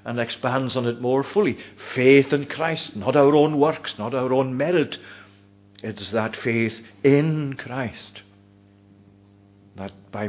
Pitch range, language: 100-130 Hz, English